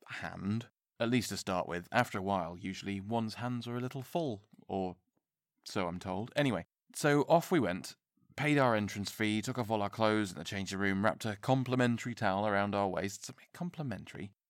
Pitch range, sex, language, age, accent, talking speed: 95-130 Hz, male, English, 30-49, British, 195 wpm